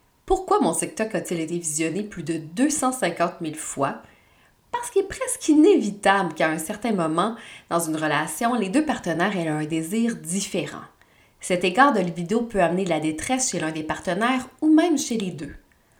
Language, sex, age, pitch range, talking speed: French, female, 20-39, 170-225 Hz, 180 wpm